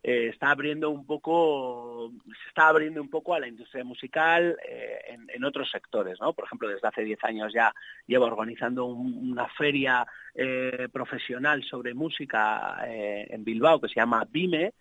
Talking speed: 160 wpm